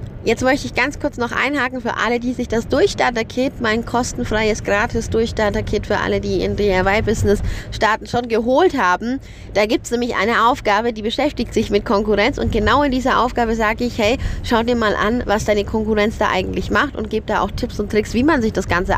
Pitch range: 205-240 Hz